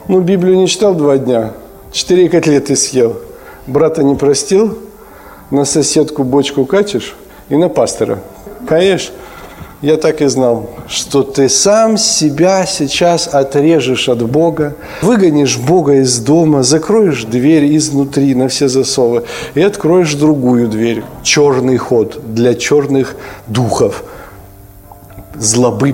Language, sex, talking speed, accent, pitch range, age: Ukrainian, male, 120 wpm, native, 110-145 Hz, 50-69